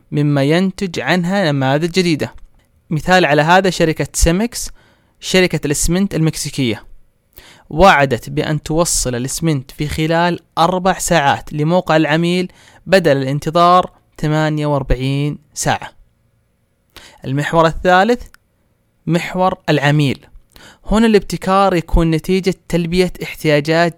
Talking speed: 95 wpm